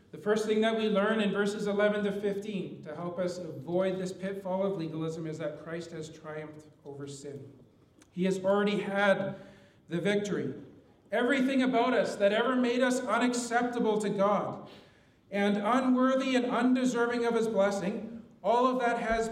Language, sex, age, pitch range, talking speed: English, male, 40-59, 185-240 Hz, 165 wpm